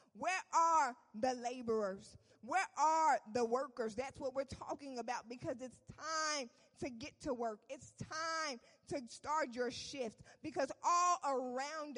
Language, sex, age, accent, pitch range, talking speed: English, female, 20-39, American, 235-300 Hz, 145 wpm